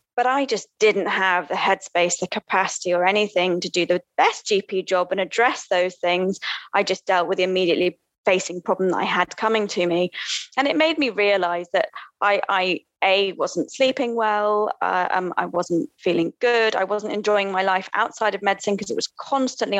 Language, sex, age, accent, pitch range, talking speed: English, female, 20-39, British, 190-235 Hz, 195 wpm